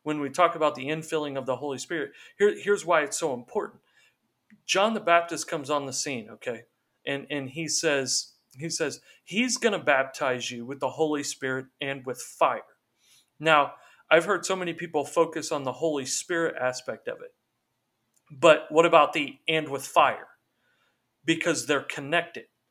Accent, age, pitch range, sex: American, 40-59, 140-170 Hz, male